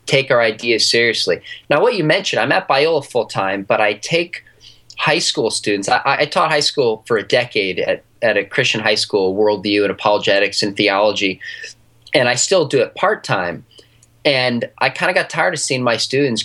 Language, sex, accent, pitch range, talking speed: English, male, American, 110-145 Hz, 195 wpm